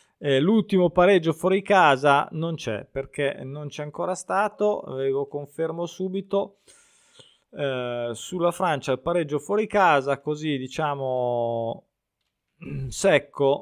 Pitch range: 130-180 Hz